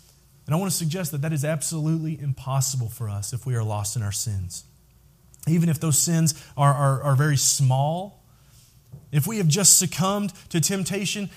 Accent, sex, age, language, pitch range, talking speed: American, male, 30-49, English, 130-175 Hz, 185 wpm